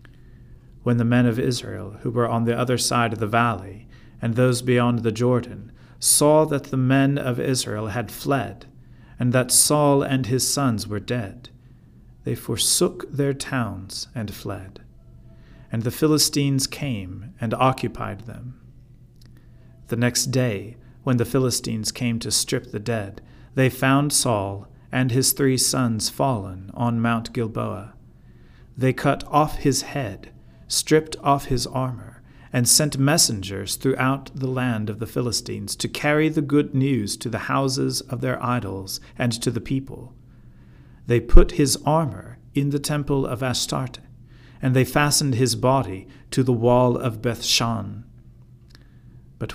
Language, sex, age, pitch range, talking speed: English, male, 40-59, 115-135 Hz, 150 wpm